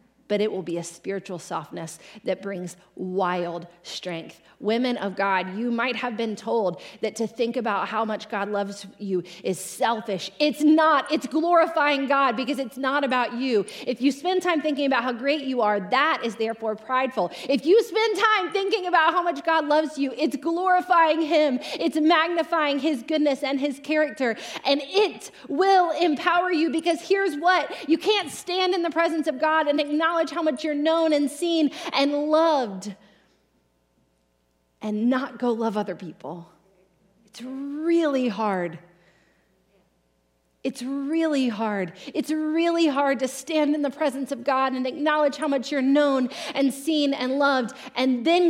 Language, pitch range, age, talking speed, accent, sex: English, 210-315 Hz, 30-49, 165 wpm, American, female